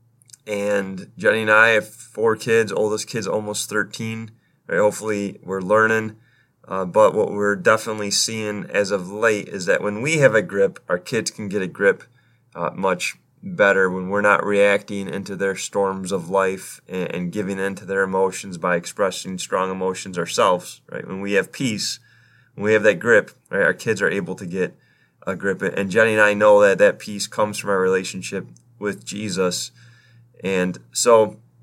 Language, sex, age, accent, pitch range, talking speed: English, male, 20-39, American, 100-115 Hz, 180 wpm